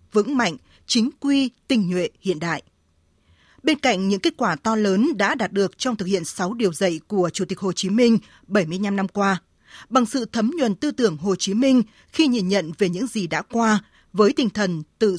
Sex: female